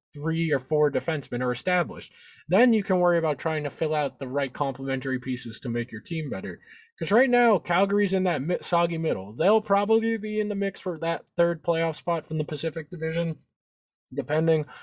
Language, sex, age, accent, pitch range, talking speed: English, male, 20-39, American, 135-170 Hz, 195 wpm